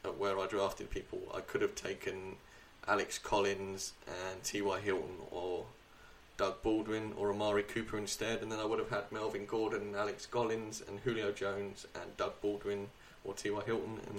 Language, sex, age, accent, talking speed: English, male, 10-29, British, 175 wpm